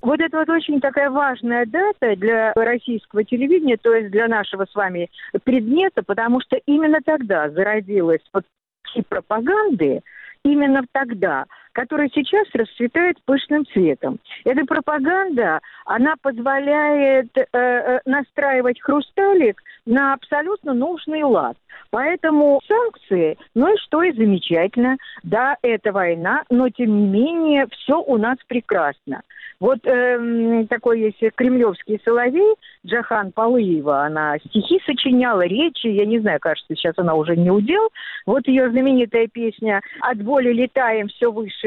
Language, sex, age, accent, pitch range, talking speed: Russian, female, 50-69, native, 220-295 Hz, 130 wpm